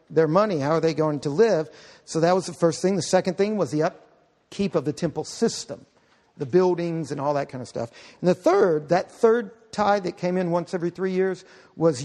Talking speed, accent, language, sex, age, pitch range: 230 wpm, American, English, male, 50-69, 155-195 Hz